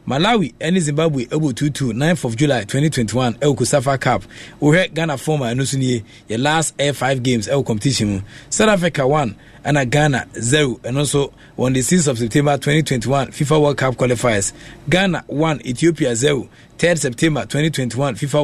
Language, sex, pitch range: English, male, 125-155 Hz